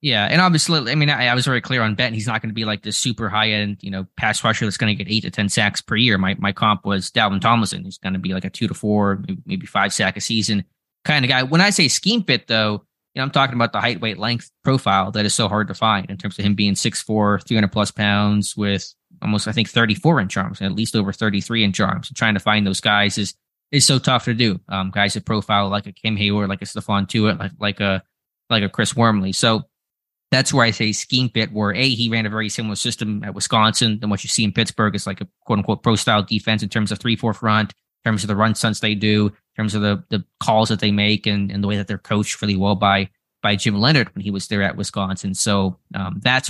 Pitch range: 100-115 Hz